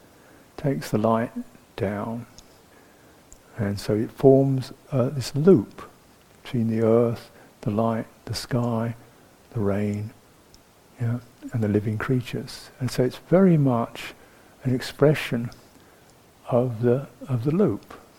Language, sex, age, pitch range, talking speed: English, male, 60-79, 110-135 Hz, 120 wpm